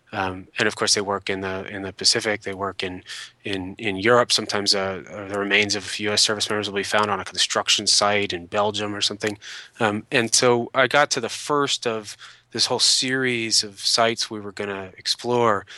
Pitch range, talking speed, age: 100-110 Hz, 210 wpm, 20-39